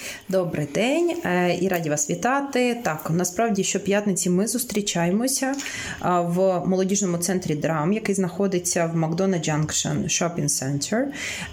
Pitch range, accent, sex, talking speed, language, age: 165-205 Hz, native, female, 115 wpm, Ukrainian, 30-49